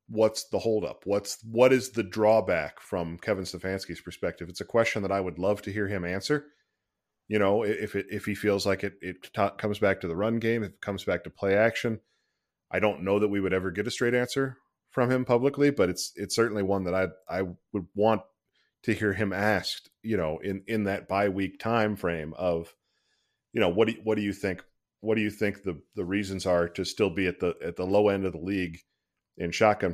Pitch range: 95-115 Hz